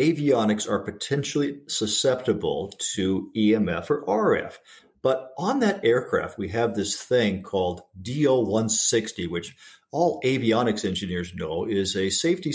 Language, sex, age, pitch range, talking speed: English, male, 50-69, 100-155 Hz, 125 wpm